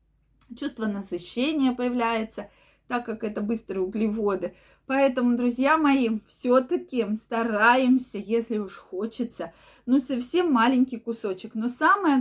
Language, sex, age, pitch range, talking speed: Russian, female, 20-39, 215-265 Hz, 110 wpm